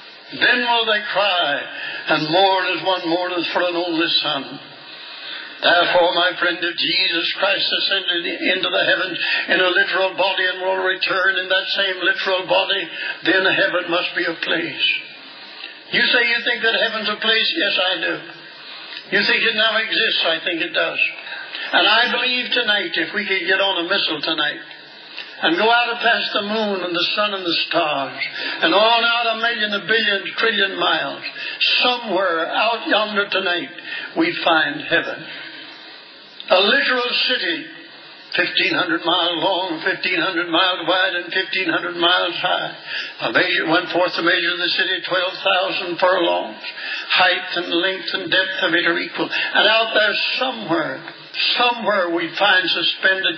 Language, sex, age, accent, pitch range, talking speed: English, male, 60-79, American, 180-225 Hz, 155 wpm